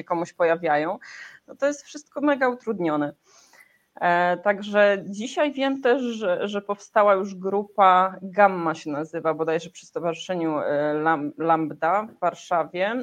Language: Polish